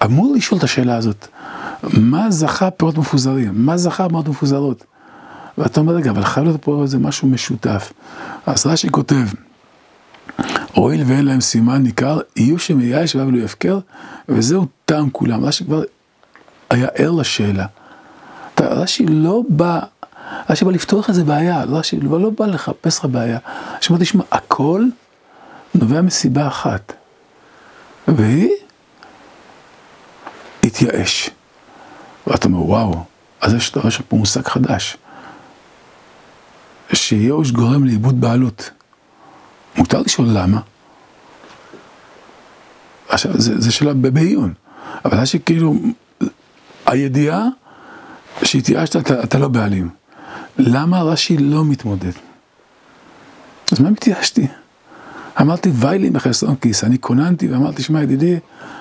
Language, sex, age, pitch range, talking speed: Hebrew, male, 50-69, 125-170 Hz, 115 wpm